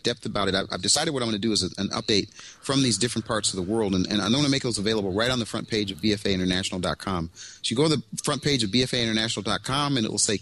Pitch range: 105-130 Hz